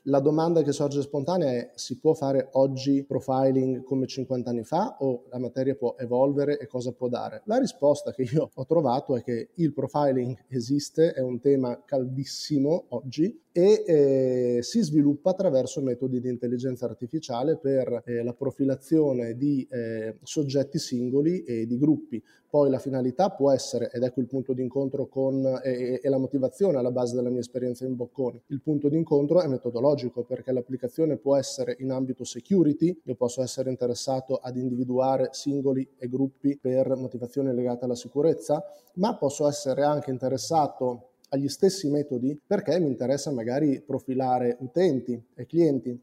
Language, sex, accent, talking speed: Italian, male, native, 165 wpm